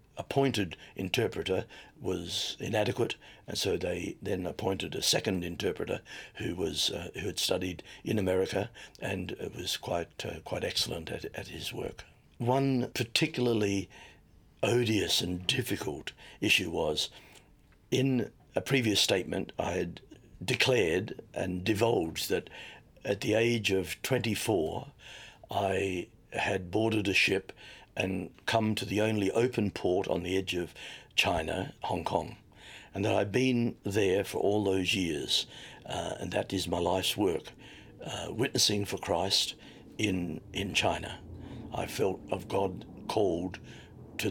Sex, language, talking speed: male, English, 135 wpm